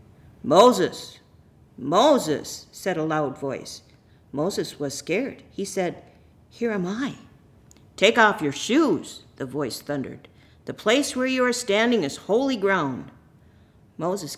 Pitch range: 165-245 Hz